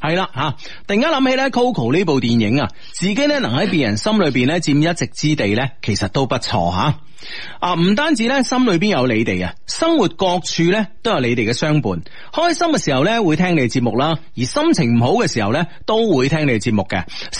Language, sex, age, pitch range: Chinese, male, 30-49, 130-200 Hz